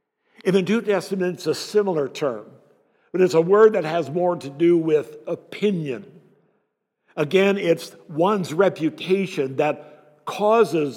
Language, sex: English, male